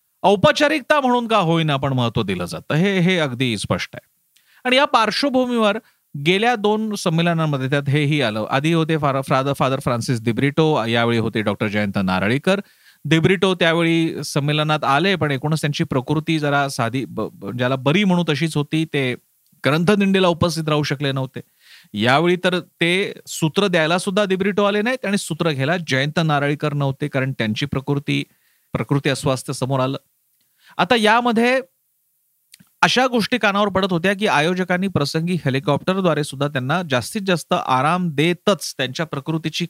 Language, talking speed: Marathi, 140 wpm